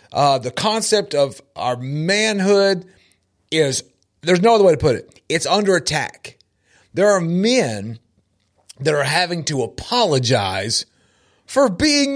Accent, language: American, English